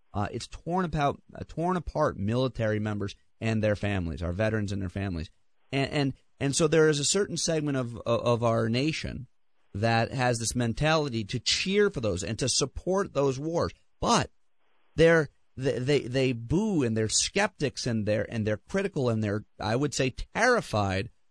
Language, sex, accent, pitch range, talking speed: English, male, American, 110-175 Hz, 180 wpm